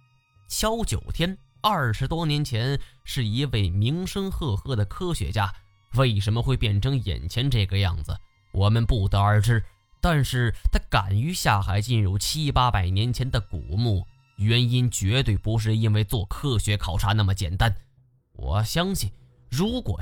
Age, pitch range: 10-29, 100-135 Hz